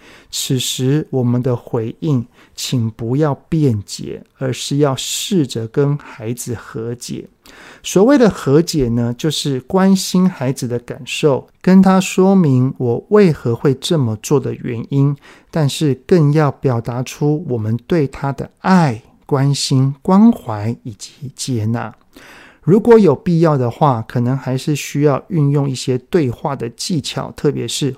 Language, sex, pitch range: Chinese, male, 125-155 Hz